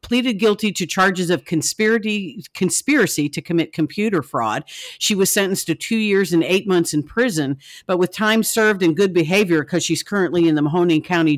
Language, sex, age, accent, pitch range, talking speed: English, female, 50-69, American, 155-195 Hz, 190 wpm